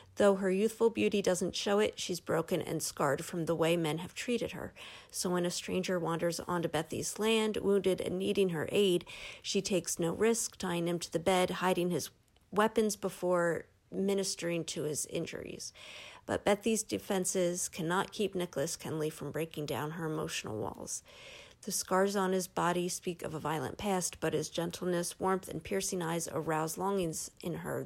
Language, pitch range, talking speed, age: English, 170-195 Hz, 175 wpm, 40-59